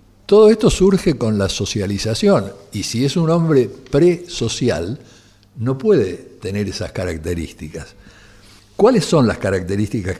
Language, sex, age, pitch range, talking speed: Spanish, male, 60-79, 95-120 Hz, 125 wpm